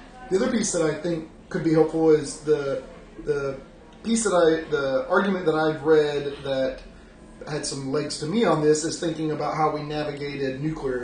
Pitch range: 130-160 Hz